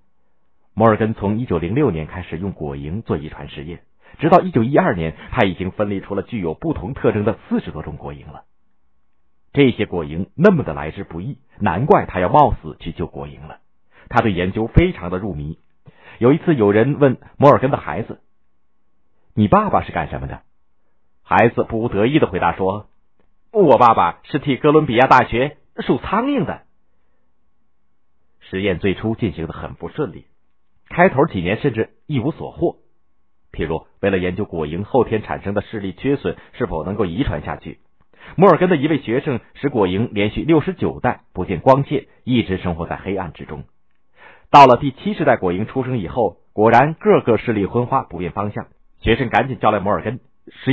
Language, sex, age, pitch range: Chinese, male, 50-69, 80-125 Hz